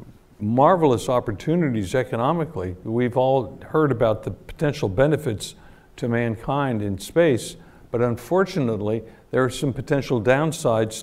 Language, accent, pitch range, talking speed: English, American, 110-135 Hz, 115 wpm